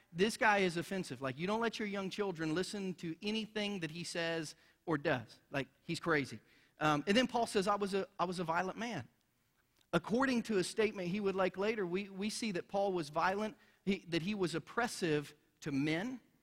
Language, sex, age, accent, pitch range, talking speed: English, male, 40-59, American, 165-210 Hz, 210 wpm